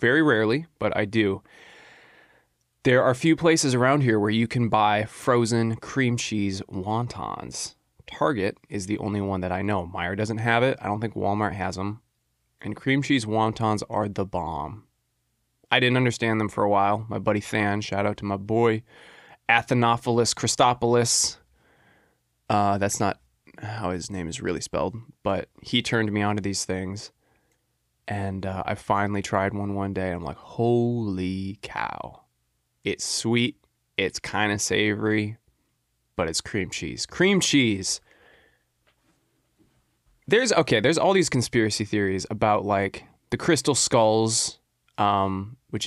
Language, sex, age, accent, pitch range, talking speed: English, male, 20-39, American, 100-115 Hz, 155 wpm